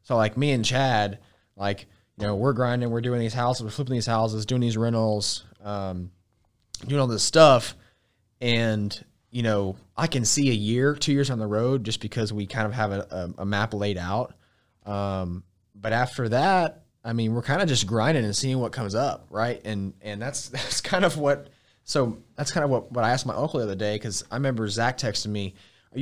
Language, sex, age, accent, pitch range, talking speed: English, male, 20-39, American, 100-125 Hz, 220 wpm